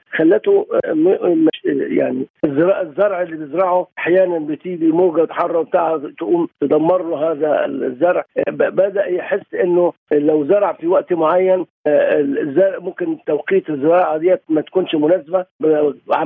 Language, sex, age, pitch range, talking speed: Arabic, male, 50-69, 160-245 Hz, 120 wpm